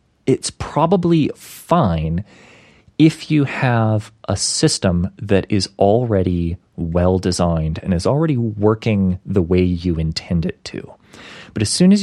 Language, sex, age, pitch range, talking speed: English, male, 30-49, 95-115 Hz, 135 wpm